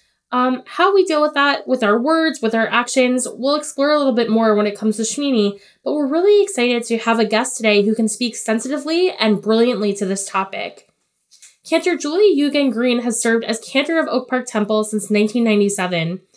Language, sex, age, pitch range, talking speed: English, female, 10-29, 210-270 Hz, 200 wpm